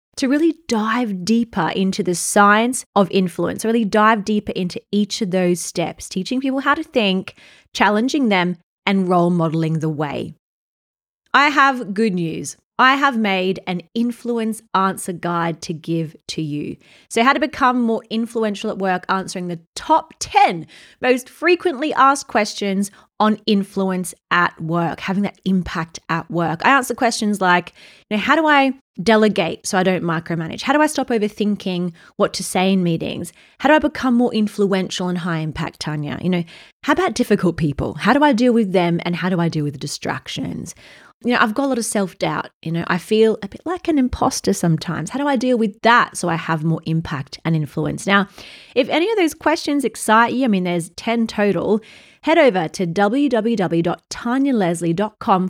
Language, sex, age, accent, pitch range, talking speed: English, female, 20-39, Australian, 175-240 Hz, 185 wpm